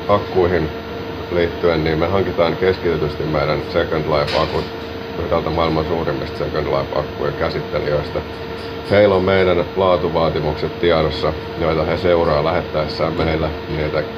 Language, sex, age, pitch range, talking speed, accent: Finnish, male, 30-49, 80-90 Hz, 95 wpm, native